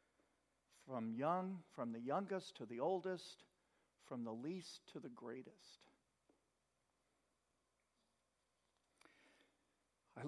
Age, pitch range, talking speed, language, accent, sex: 50-69, 120-165 Hz, 90 wpm, English, American, male